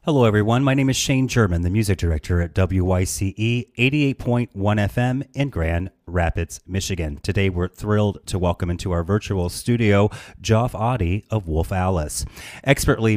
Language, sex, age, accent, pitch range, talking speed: English, male, 30-49, American, 90-115 Hz, 150 wpm